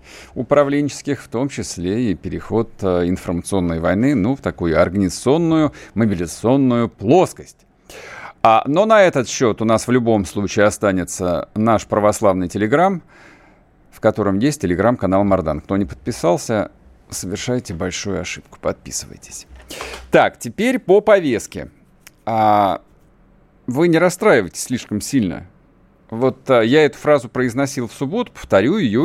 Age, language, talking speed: 50-69, Russian, 125 wpm